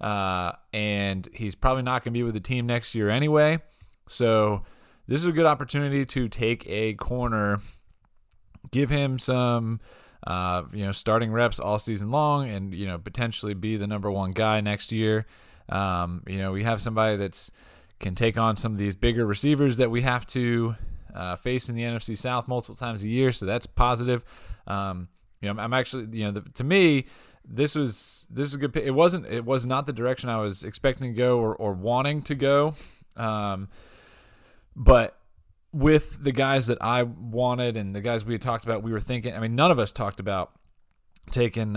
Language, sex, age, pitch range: English, male, 20-39, 100-125 Hz